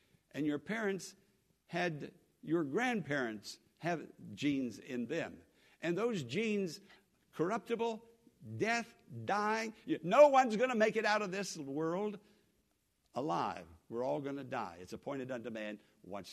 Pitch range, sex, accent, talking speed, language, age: 150-220 Hz, male, American, 130 wpm, English, 60-79